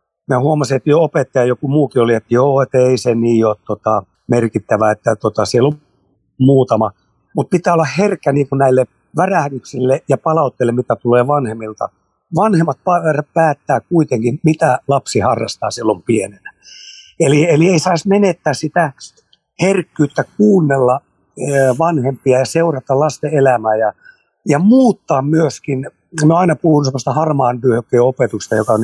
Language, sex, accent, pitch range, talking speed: Finnish, male, native, 125-165 Hz, 145 wpm